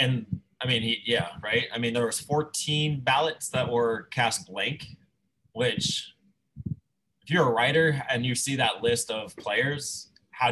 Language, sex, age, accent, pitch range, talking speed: English, male, 20-39, American, 120-145 Hz, 160 wpm